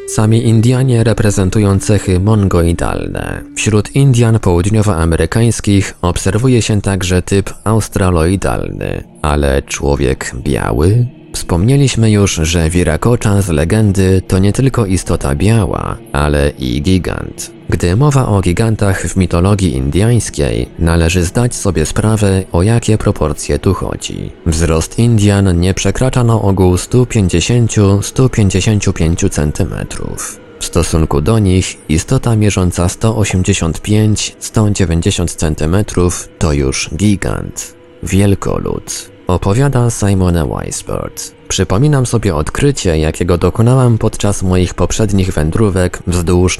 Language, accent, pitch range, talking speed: Polish, native, 85-110 Hz, 100 wpm